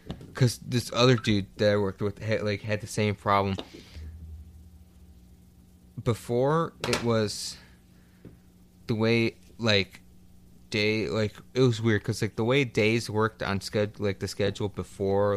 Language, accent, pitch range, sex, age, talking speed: English, American, 90-110 Hz, male, 20-39, 135 wpm